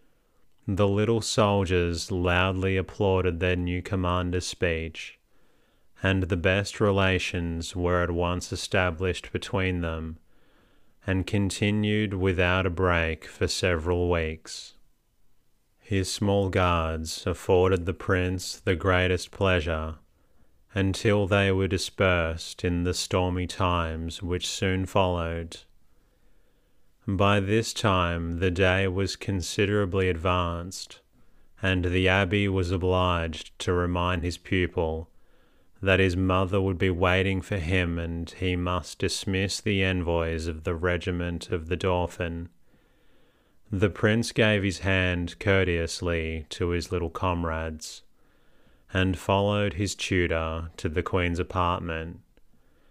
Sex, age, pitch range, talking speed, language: male, 30-49, 85-95 Hz, 115 wpm, English